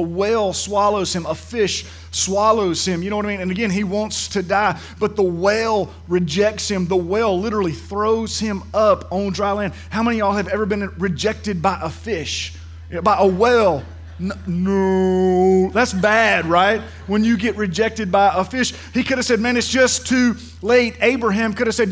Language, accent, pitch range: English, American, 165-220 Hz